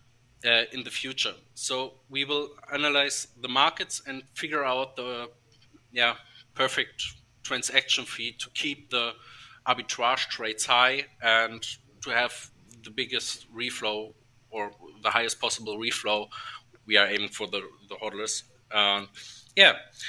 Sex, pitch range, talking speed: male, 115-130 Hz, 130 wpm